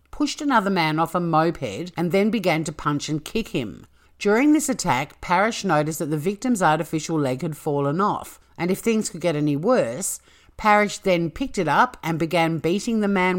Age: 50-69